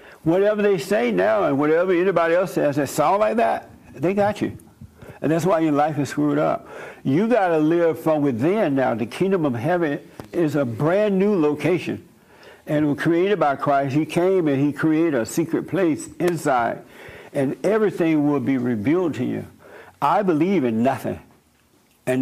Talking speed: 180 wpm